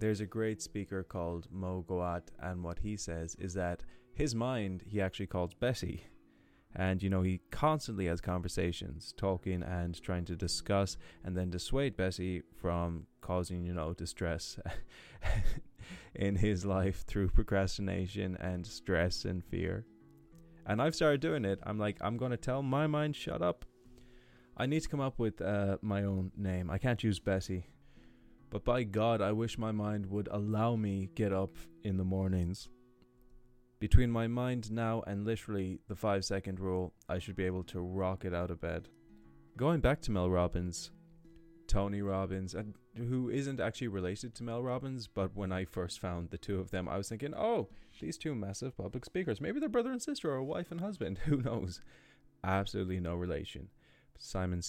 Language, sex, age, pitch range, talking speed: English, male, 20-39, 90-115 Hz, 175 wpm